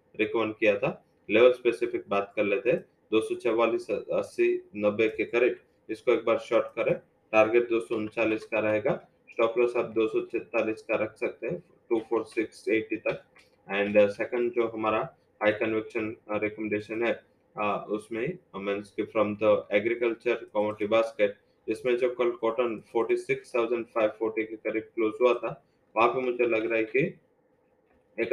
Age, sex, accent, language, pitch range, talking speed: 20-39, male, Indian, English, 105-120 Hz, 110 wpm